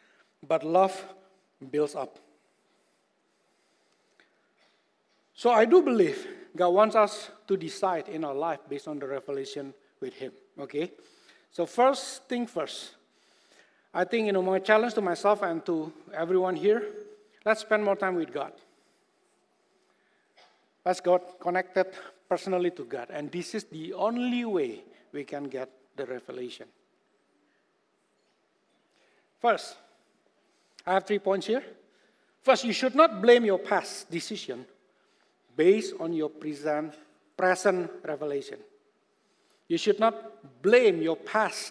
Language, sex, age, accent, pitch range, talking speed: English, male, 60-79, Indonesian, 170-235 Hz, 125 wpm